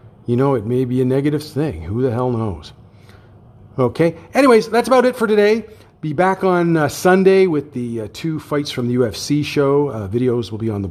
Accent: American